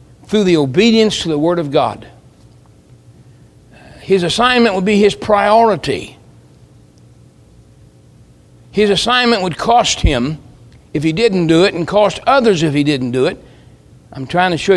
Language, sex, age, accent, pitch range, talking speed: English, male, 60-79, American, 160-210 Hz, 145 wpm